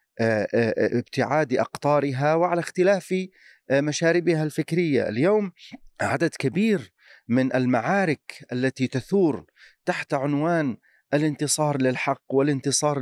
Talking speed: 85 wpm